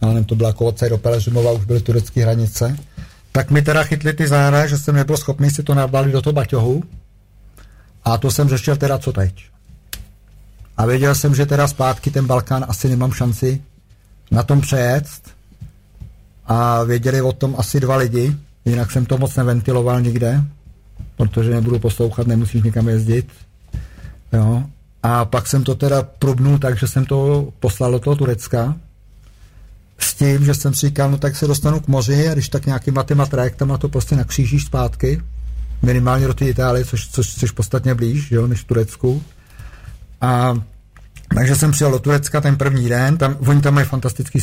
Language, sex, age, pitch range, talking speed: Czech, male, 50-69, 110-140 Hz, 175 wpm